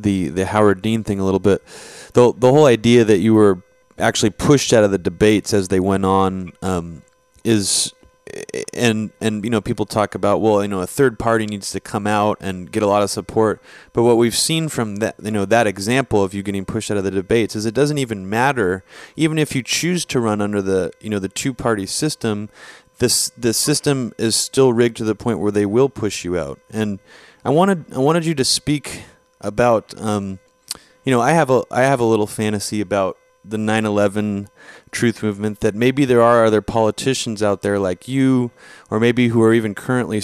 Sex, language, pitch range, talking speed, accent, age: male, English, 100-120 Hz, 210 wpm, American, 30-49